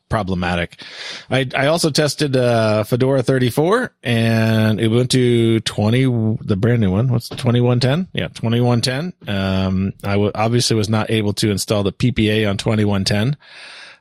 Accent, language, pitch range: American, English, 105-130 Hz